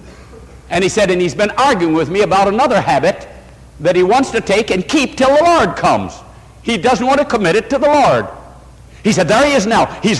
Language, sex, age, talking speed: English, male, 60-79, 230 wpm